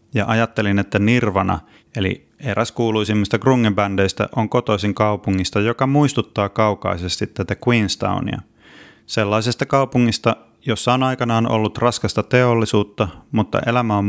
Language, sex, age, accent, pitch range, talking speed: Finnish, male, 30-49, native, 100-120 Hz, 115 wpm